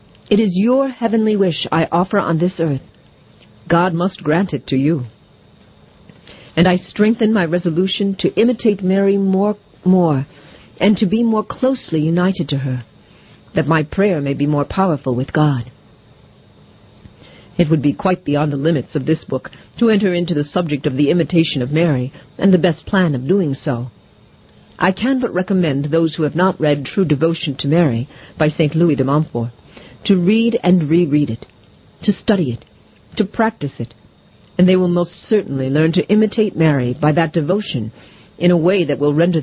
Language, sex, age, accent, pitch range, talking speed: English, female, 50-69, American, 140-195 Hz, 180 wpm